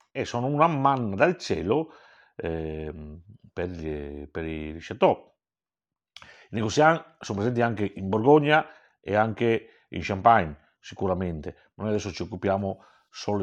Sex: male